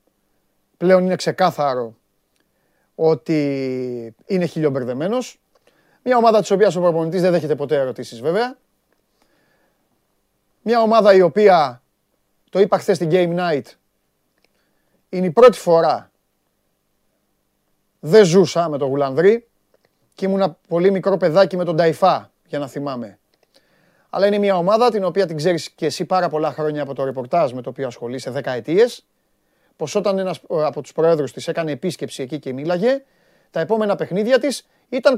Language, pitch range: Greek, 155-210 Hz